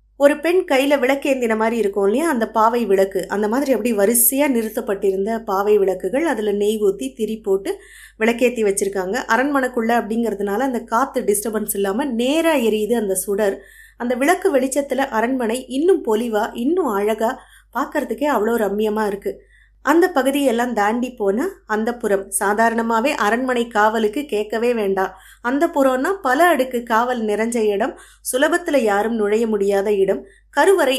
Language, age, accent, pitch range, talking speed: Tamil, 20-39, native, 205-275 Hz, 135 wpm